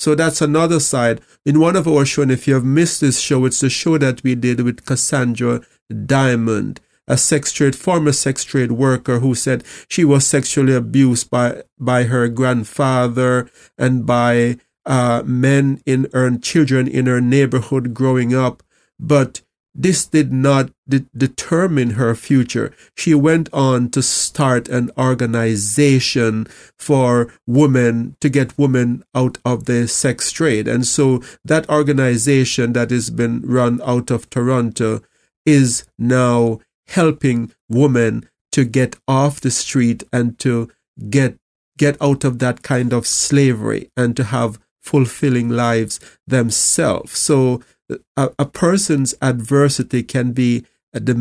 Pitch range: 120-140 Hz